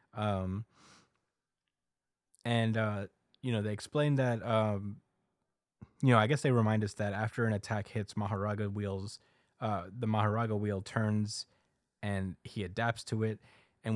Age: 20-39